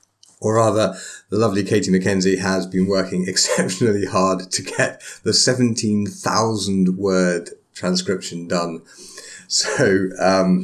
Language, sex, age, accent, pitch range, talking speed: English, male, 30-49, British, 90-110 Hz, 115 wpm